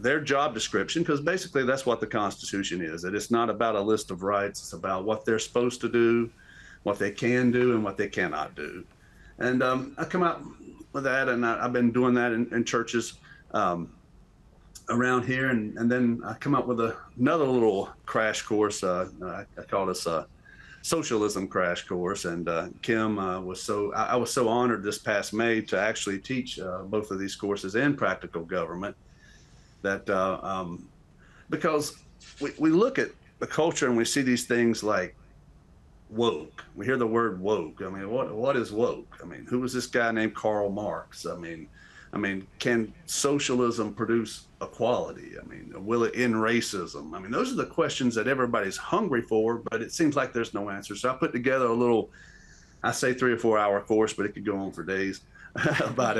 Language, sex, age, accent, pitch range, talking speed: English, male, 40-59, American, 100-125 Hz, 200 wpm